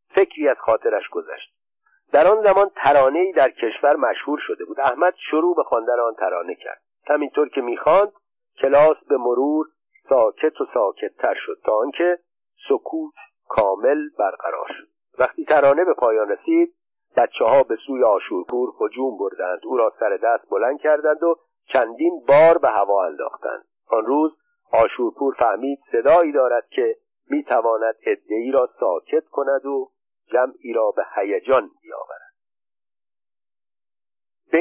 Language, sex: Persian, male